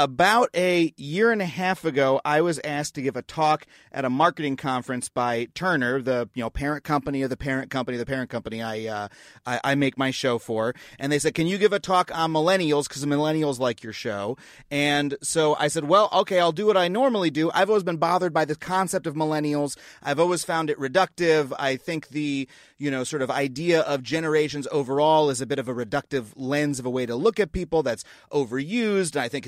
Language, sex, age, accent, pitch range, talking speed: English, male, 30-49, American, 135-180 Hz, 225 wpm